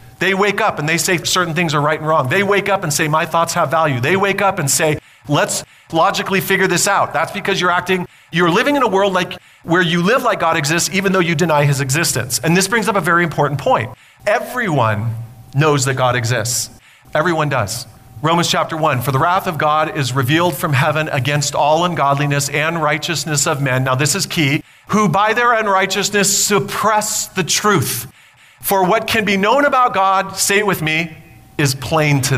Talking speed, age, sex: 210 wpm, 40-59, male